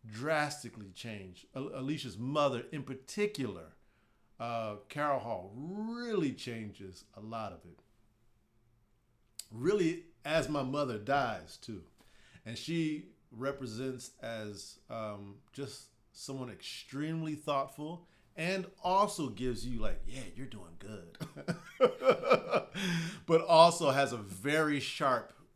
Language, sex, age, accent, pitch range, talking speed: English, male, 40-59, American, 110-145 Hz, 110 wpm